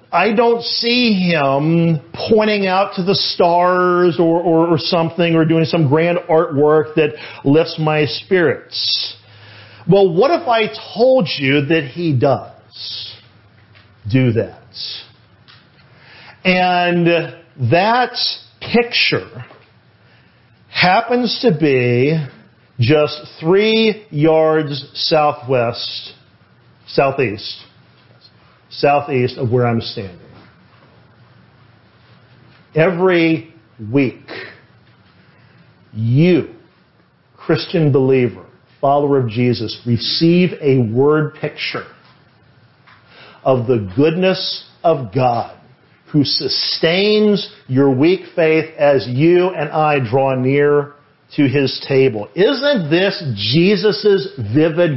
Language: English